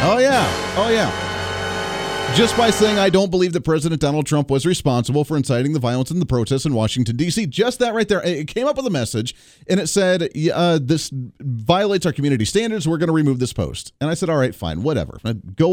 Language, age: English, 30-49